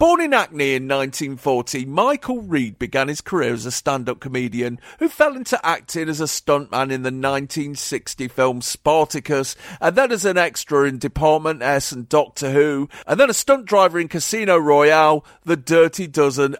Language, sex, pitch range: English, male, 135-180 Hz